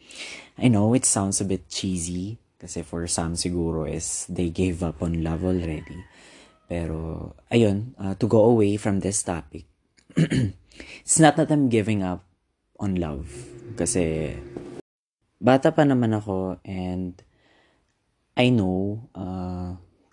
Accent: Filipino